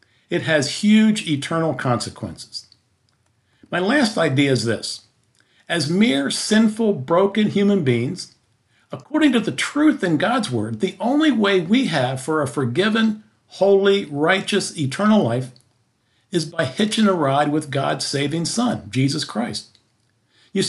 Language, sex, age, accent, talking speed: English, male, 50-69, American, 135 wpm